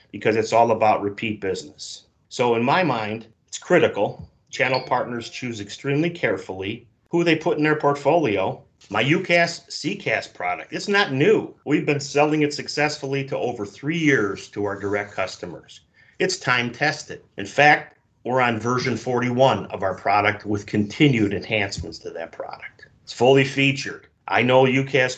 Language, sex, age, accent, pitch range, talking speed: English, male, 40-59, American, 105-135 Hz, 160 wpm